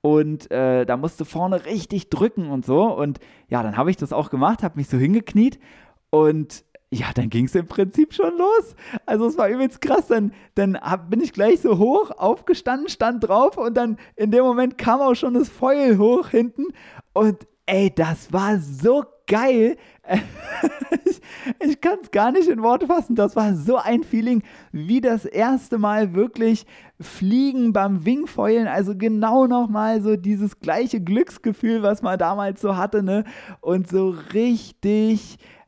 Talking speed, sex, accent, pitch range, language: 170 wpm, male, German, 180-240 Hz, German